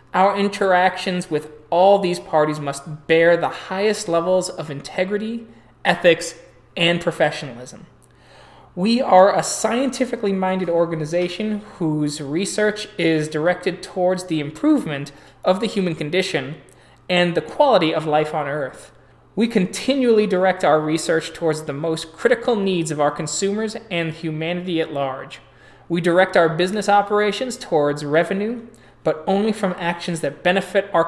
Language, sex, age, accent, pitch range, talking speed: English, male, 20-39, American, 155-195 Hz, 135 wpm